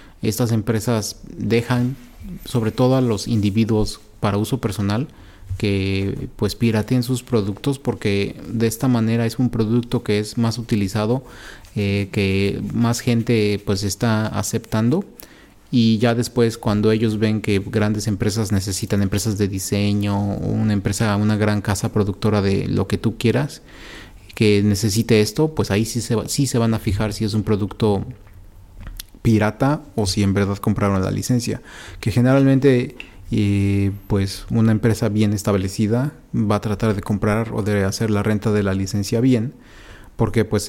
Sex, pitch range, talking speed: male, 100-115 Hz, 160 wpm